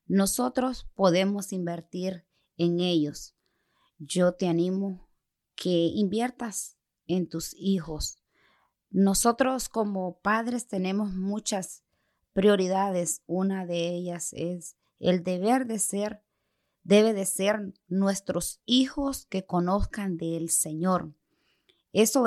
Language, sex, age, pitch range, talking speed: Spanish, female, 30-49, 170-210 Hz, 100 wpm